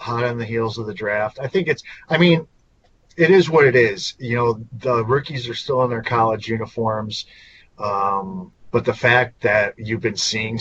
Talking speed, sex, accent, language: 200 wpm, male, American, English